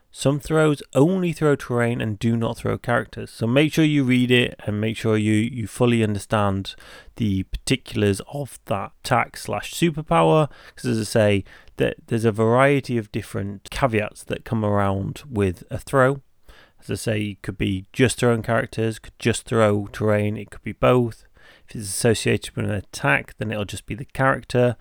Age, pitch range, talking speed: 30-49, 105-130 Hz, 185 wpm